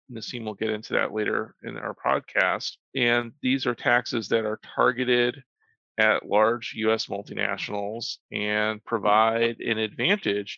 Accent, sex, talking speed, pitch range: American, male, 135 wpm, 105-130 Hz